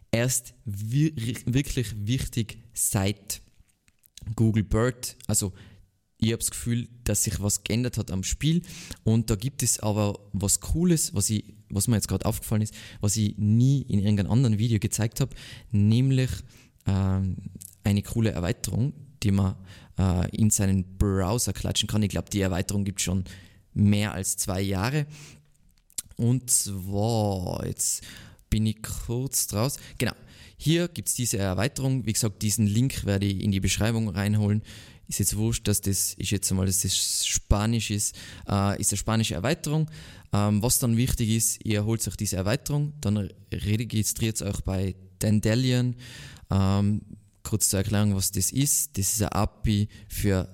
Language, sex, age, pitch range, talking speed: German, male, 20-39, 100-115 Hz, 155 wpm